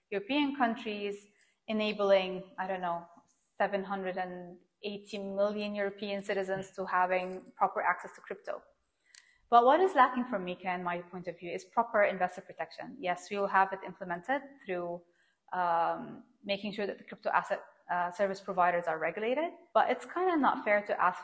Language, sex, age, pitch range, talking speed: English, female, 20-39, 185-205 Hz, 165 wpm